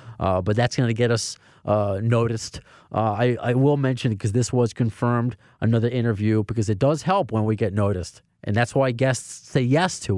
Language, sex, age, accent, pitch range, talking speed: English, male, 30-49, American, 105-135 Hz, 200 wpm